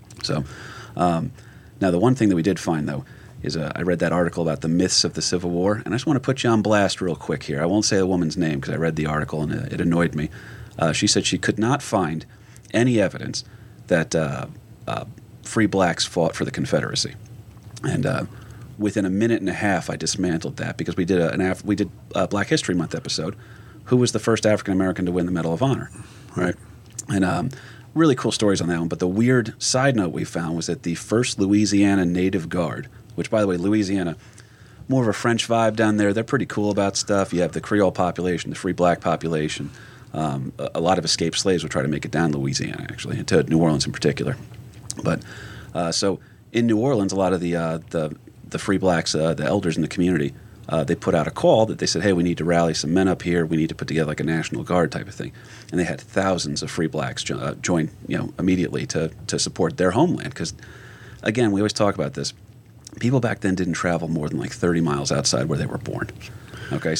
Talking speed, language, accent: 240 wpm, English, American